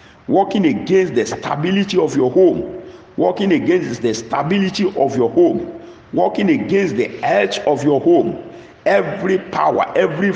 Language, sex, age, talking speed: English, male, 50-69, 140 wpm